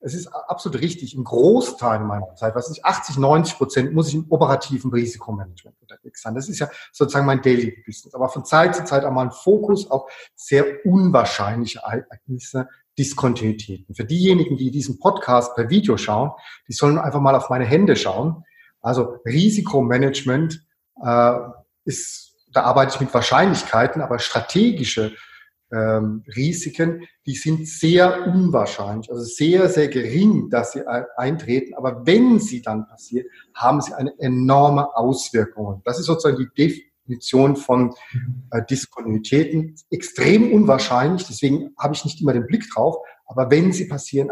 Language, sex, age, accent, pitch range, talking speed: German, male, 30-49, German, 120-160 Hz, 150 wpm